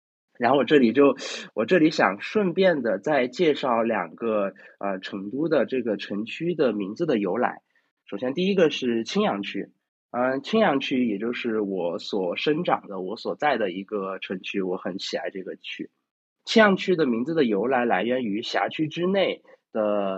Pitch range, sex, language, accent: 110-180 Hz, male, Chinese, native